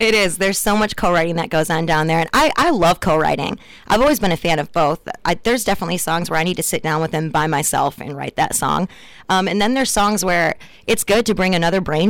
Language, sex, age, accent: English, female, 20-39, American